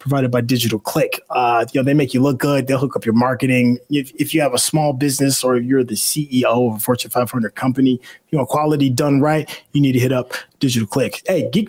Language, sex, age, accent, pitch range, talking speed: English, male, 20-39, American, 140-185 Hz, 250 wpm